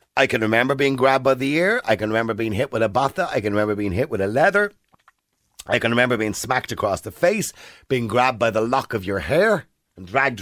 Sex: male